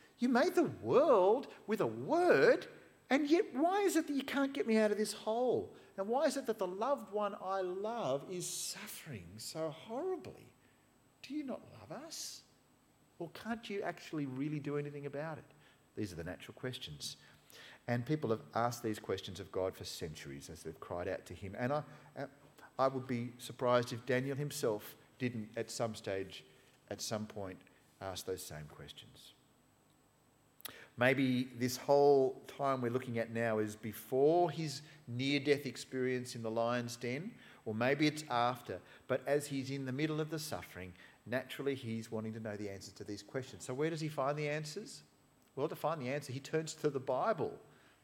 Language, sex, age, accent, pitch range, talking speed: English, male, 50-69, Australian, 115-165 Hz, 185 wpm